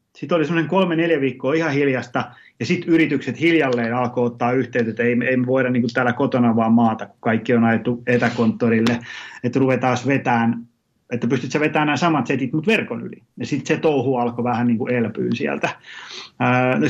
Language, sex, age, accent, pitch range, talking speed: Finnish, male, 30-49, native, 120-145 Hz, 180 wpm